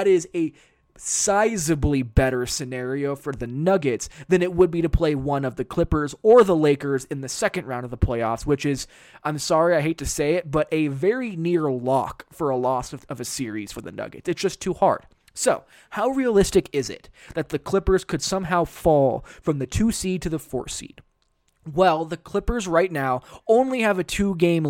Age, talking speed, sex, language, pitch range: 20-39, 205 wpm, male, English, 135-195 Hz